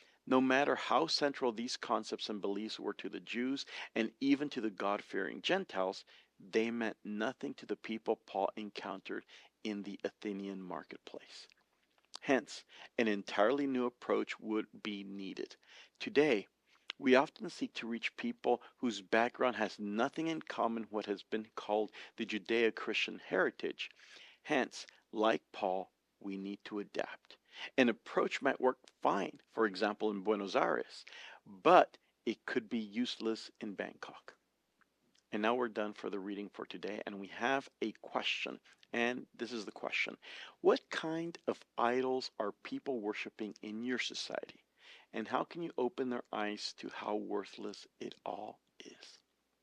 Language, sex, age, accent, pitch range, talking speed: English, male, 50-69, American, 105-125 Hz, 150 wpm